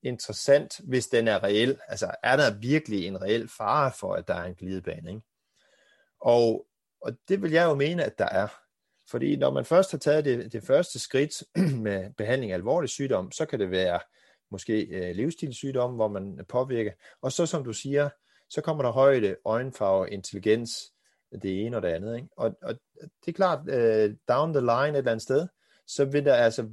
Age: 30-49